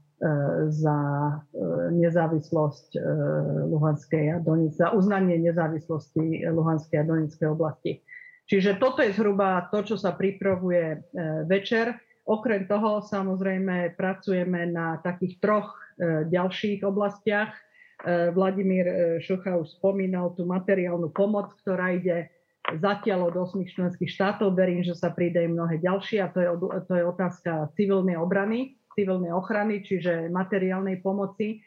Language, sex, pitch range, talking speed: Slovak, female, 165-195 Hz, 120 wpm